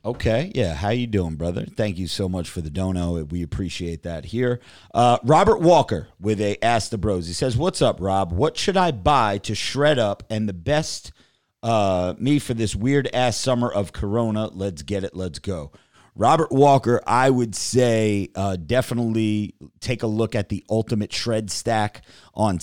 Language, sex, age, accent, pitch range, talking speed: English, male, 30-49, American, 95-120 Hz, 185 wpm